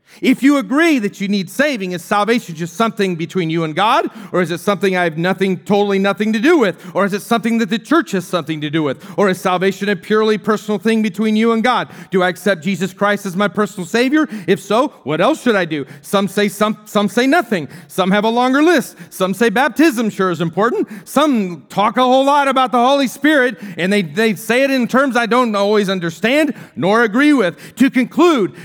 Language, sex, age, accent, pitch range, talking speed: English, male, 40-59, American, 195-265 Hz, 225 wpm